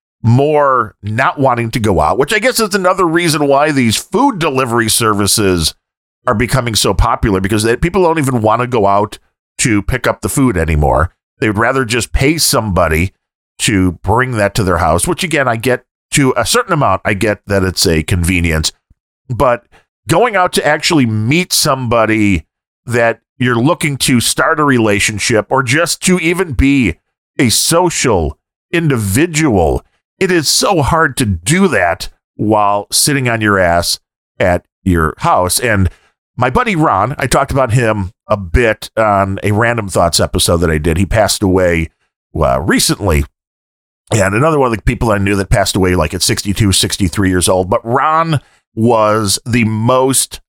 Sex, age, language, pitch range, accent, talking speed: male, 40-59, English, 95-135 Hz, American, 170 wpm